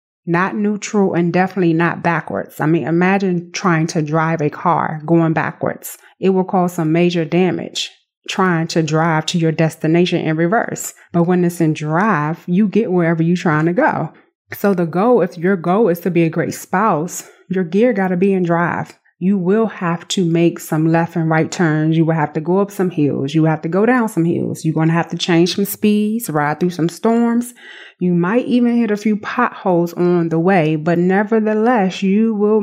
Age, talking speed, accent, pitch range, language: 30-49, 210 wpm, American, 165-200 Hz, English